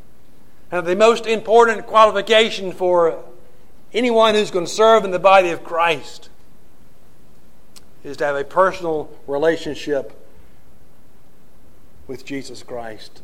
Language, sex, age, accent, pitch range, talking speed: English, male, 50-69, American, 135-210 Hz, 120 wpm